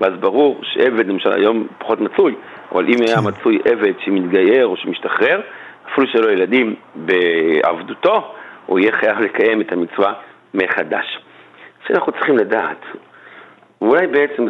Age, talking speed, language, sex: 50-69, 130 wpm, Hebrew, male